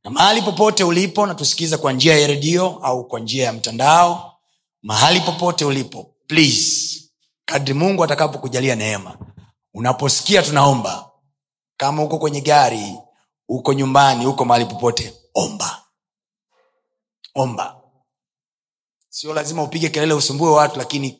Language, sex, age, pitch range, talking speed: Swahili, male, 30-49, 115-160 Hz, 120 wpm